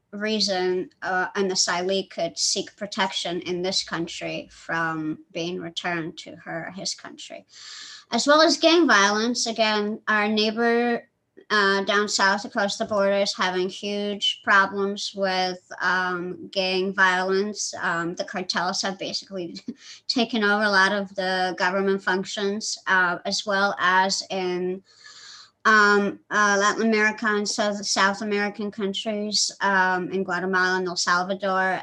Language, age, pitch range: English, 20-39, 185-210 Hz